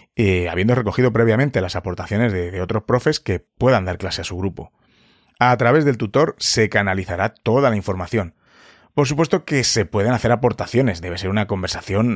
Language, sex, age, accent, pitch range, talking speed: Spanish, male, 30-49, Spanish, 100-130 Hz, 185 wpm